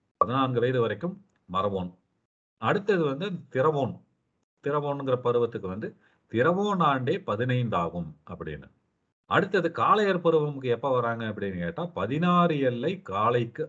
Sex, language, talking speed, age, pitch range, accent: male, Tamil, 110 wpm, 40-59, 95-150 Hz, native